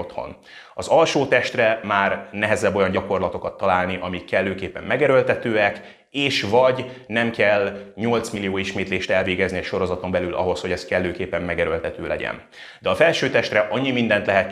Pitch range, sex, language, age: 95-115 Hz, male, Hungarian, 30-49